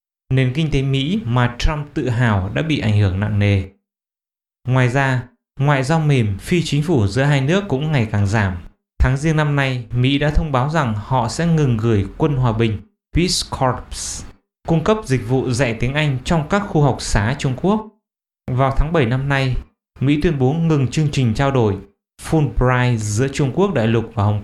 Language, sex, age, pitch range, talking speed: English, male, 20-39, 115-155 Hz, 205 wpm